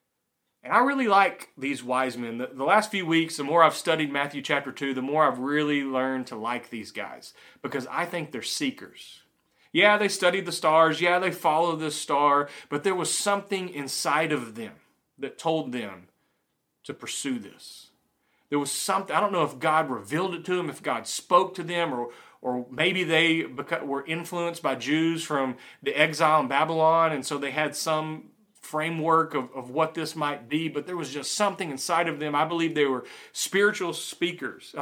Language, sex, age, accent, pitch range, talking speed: English, male, 30-49, American, 135-170 Hz, 195 wpm